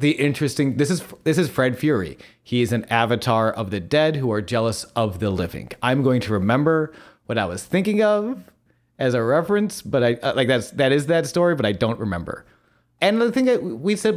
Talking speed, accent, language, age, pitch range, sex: 215 wpm, American, English, 30-49, 110-145 Hz, male